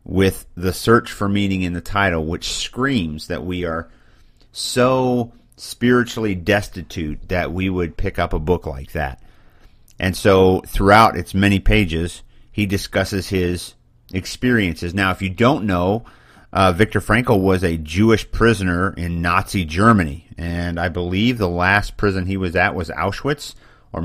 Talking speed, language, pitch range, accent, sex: 155 wpm, English, 90-110 Hz, American, male